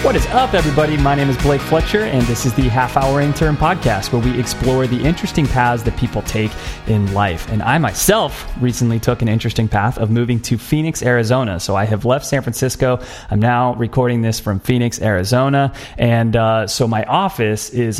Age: 30-49